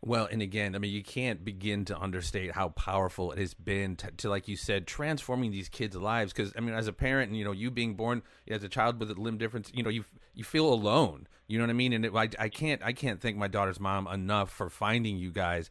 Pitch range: 100-125 Hz